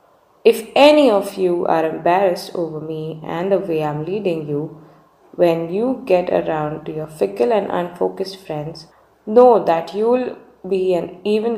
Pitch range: 155-205 Hz